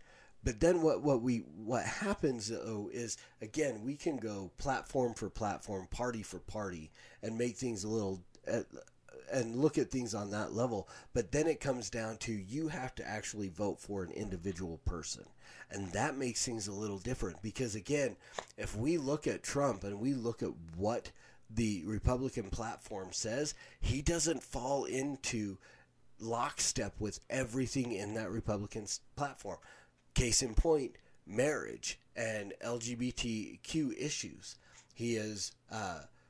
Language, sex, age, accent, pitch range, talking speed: English, male, 30-49, American, 105-130 Hz, 150 wpm